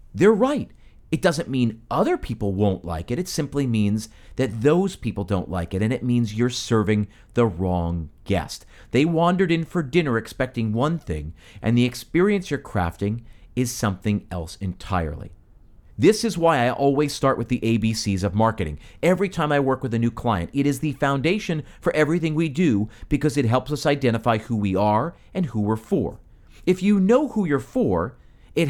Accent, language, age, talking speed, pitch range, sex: American, English, 40-59, 190 wpm, 105-145 Hz, male